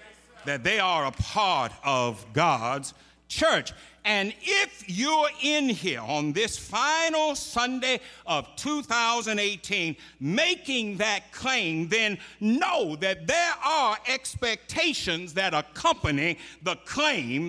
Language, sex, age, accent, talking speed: English, male, 60-79, American, 110 wpm